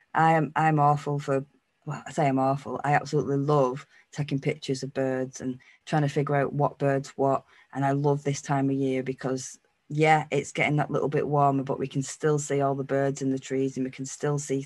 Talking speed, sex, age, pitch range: 230 wpm, female, 20-39, 135-155 Hz